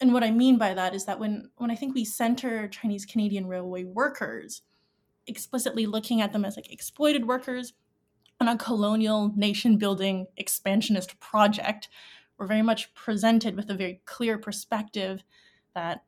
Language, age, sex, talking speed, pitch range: English, 20-39, female, 155 wpm, 200-235 Hz